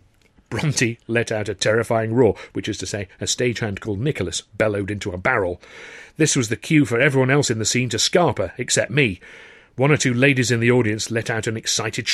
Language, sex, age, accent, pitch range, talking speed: English, male, 40-59, British, 115-150 Hz, 215 wpm